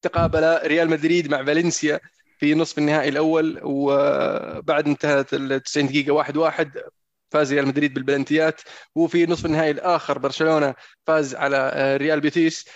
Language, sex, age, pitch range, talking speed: Arabic, male, 20-39, 140-160 Hz, 130 wpm